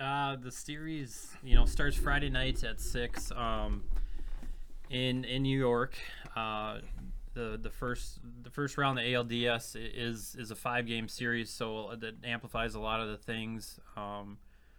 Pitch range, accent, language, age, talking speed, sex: 105-120 Hz, American, English, 20-39, 160 wpm, male